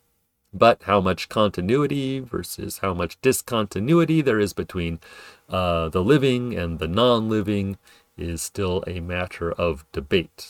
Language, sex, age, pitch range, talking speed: English, male, 40-59, 85-105 Hz, 130 wpm